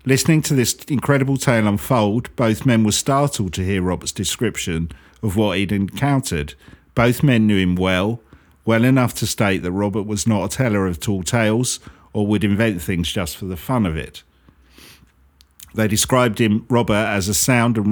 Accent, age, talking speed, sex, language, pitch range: British, 50-69, 180 wpm, male, English, 90-115 Hz